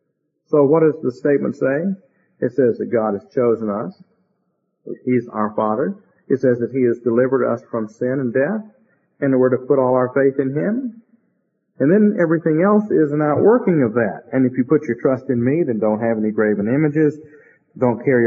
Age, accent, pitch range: 50-69, American, 125-180 Hz